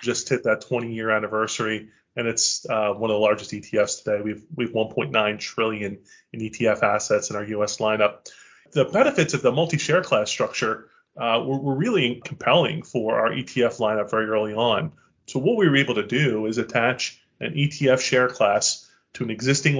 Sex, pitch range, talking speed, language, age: male, 115-135 Hz, 180 wpm, English, 30-49